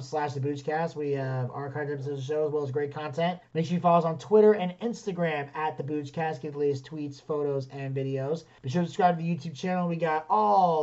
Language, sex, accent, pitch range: English, male, American, 140-170 Hz